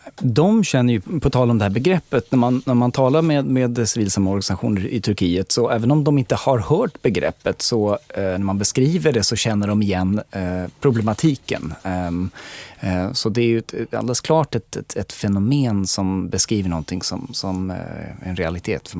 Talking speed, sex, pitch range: 190 wpm, male, 95-120 Hz